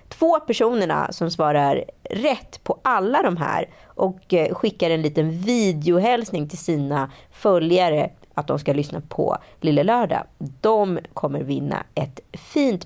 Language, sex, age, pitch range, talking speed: Swedish, female, 30-49, 145-230 Hz, 135 wpm